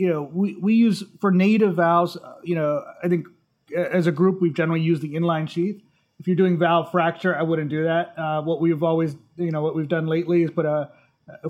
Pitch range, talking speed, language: 160-185 Hz, 235 wpm, English